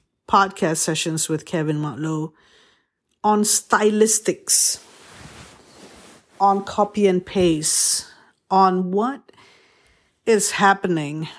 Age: 50-69